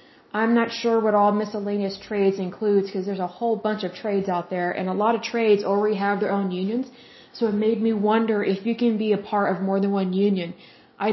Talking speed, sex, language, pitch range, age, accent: 235 wpm, female, Russian, 195-225 Hz, 20-39, American